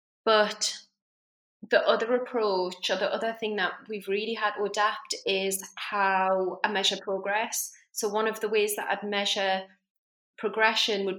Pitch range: 190-210 Hz